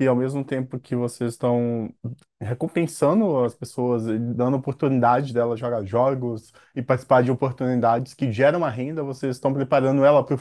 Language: Portuguese